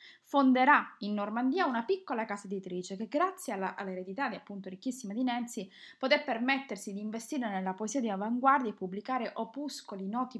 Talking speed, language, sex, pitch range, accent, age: 160 wpm, Italian, female, 205-265 Hz, native, 20-39